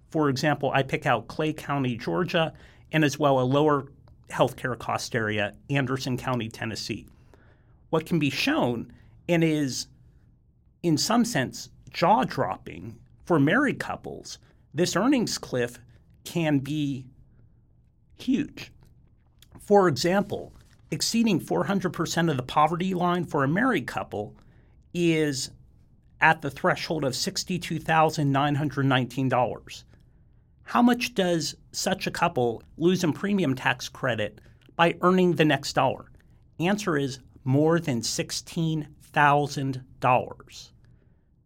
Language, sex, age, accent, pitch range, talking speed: English, male, 50-69, American, 125-165 Hz, 115 wpm